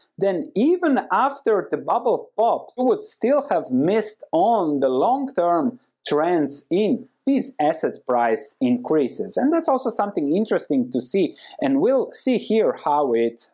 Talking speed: 145 wpm